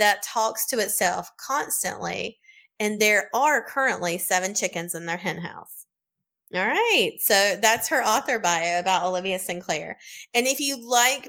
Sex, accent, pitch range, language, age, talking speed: female, American, 185-240 Hz, English, 20-39, 155 wpm